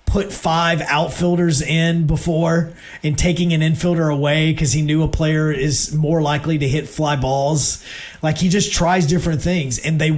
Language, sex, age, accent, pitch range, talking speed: English, male, 30-49, American, 140-160 Hz, 175 wpm